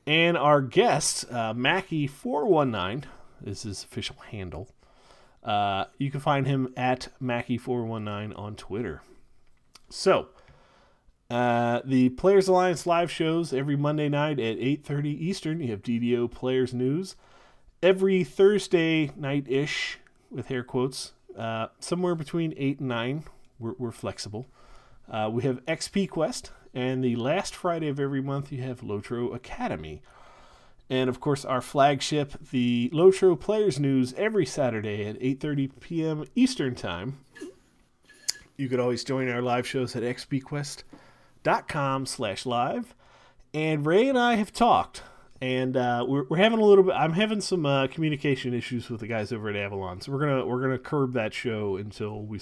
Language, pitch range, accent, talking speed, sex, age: English, 120-150 Hz, American, 150 wpm, male, 30-49